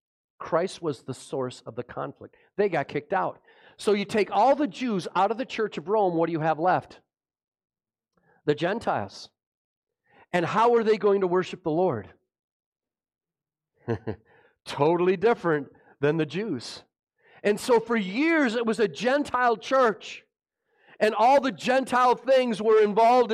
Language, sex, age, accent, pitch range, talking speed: English, male, 40-59, American, 150-230 Hz, 155 wpm